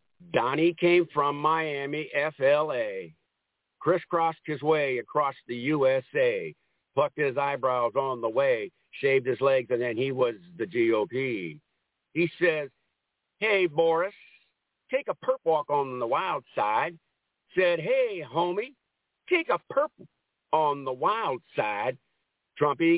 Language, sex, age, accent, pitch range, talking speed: English, male, 50-69, American, 135-180 Hz, 130 wpm